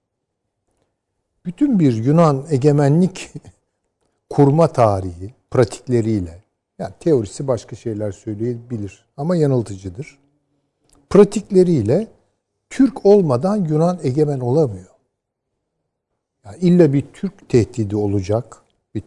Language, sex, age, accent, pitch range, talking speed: Turkish, male, 60-79, native, 105-160 Hz, 85 wpm